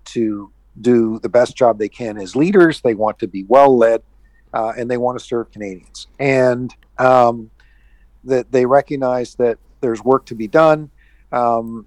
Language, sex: English, male